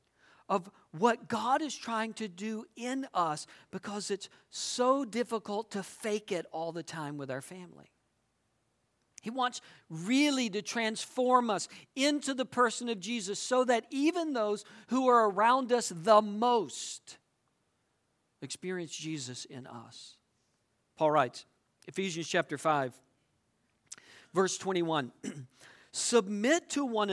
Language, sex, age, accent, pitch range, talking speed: English, male, 50-69, American, 160-250 Hz, 125 wpm